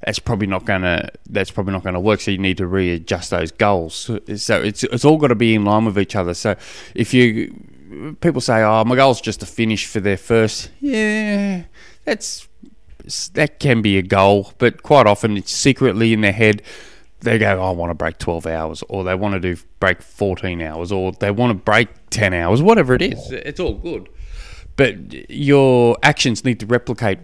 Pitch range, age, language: 100-125 Hz, 20-39, English